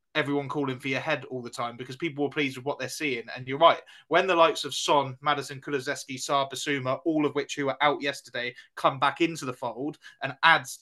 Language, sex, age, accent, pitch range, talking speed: English, male, 20-39, British, 125-145 Hz, 225 wpm